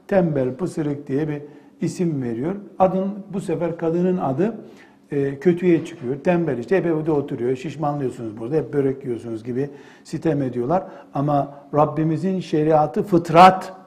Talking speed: 135 wpm